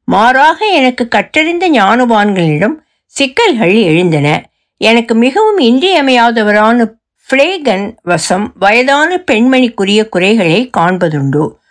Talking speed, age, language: 75 wpm, 60-79, Tamil